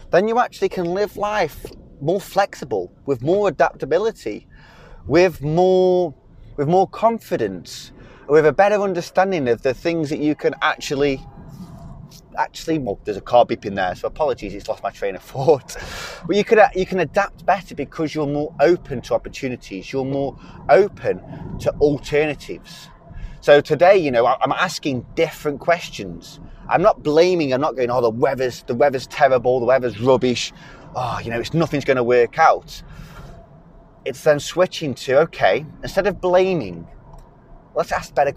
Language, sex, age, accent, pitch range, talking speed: English, male, 30-49, British, 135-185 Hz, 160 wpm